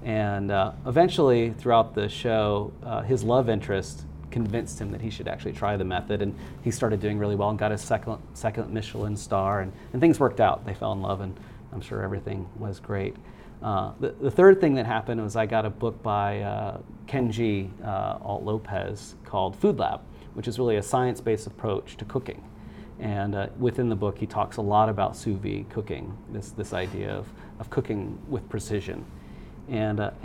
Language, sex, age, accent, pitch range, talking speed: English, male, 40-59, American, 105-130 Hz, 190 wpm